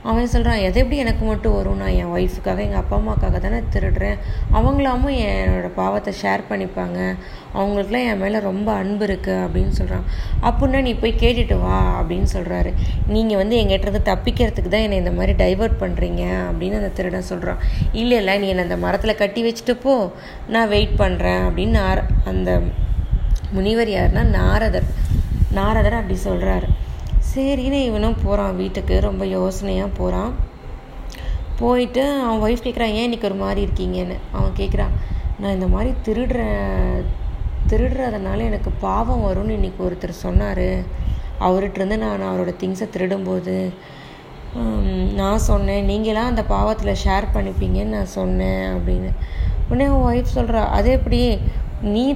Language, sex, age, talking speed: Tamil, female, 20-39, 140 wpm